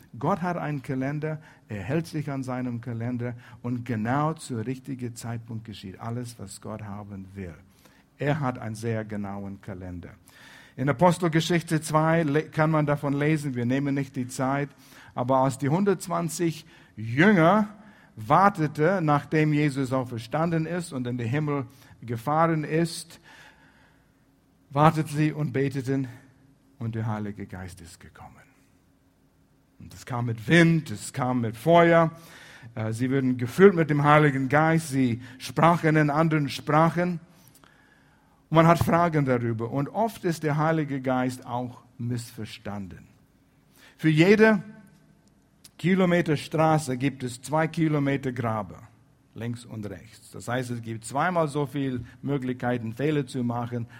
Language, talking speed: German, 135 wpm